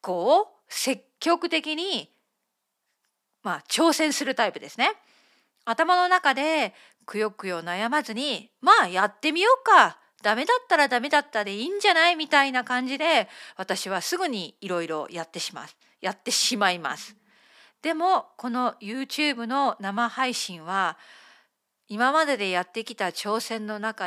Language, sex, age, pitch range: Japanese, female, 40-59, 205-310 Hz